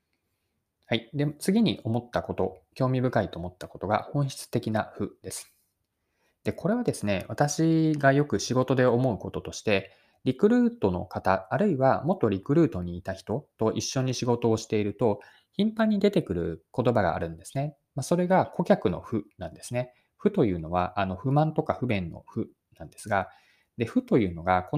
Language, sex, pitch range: Japanese, male, 95-145 Hz